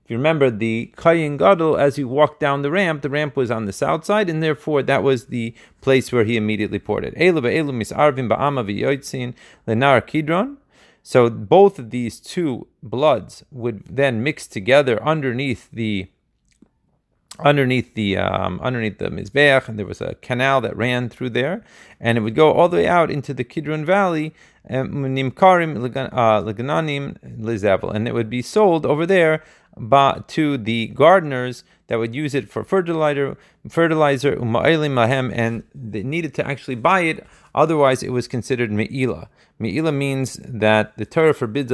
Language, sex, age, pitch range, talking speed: Hebrew, male, 30-49, 115-150 Hz, 150 wpm